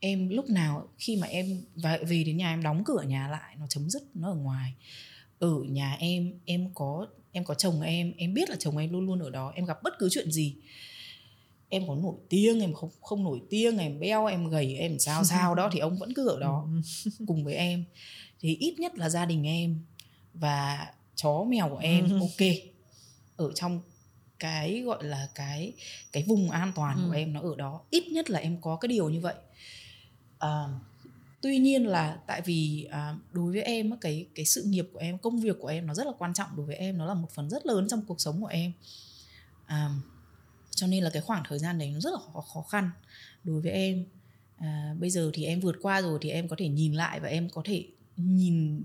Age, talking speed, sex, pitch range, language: 20-39, 225 wpm, female, 145-185 Hz, Vietnamese